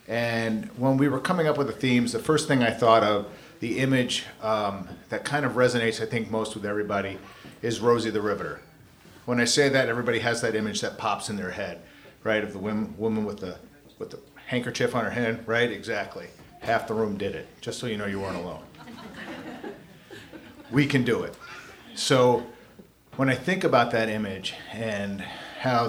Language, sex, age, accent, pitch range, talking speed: English, male, 40-59, American, 110-130 Hz, 190 wpm